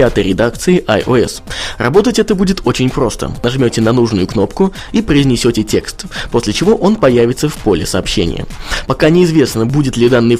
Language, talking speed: Russian, 150 wpm